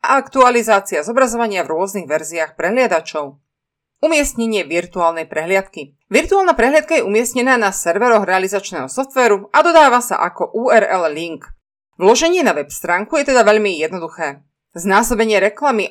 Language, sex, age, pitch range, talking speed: Slovak, female, 30-49, 180-250 Hz, 130 wpm